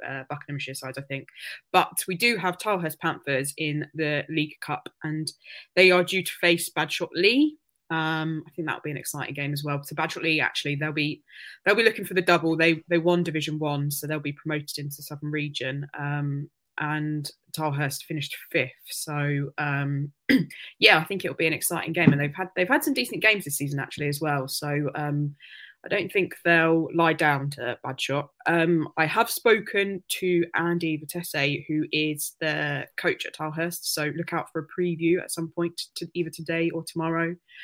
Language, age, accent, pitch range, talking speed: English, 20-39, British, 150-170 Hz, 200 wpm